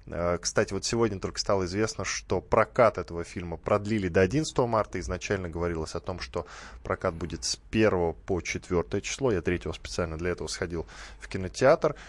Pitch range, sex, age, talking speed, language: 95-125 Hz, male, 20-39, 170 wpm, Russian